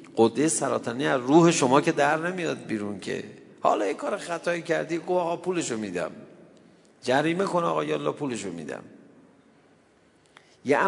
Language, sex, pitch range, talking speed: Persian, male, 110-185 Hz, 140 wpm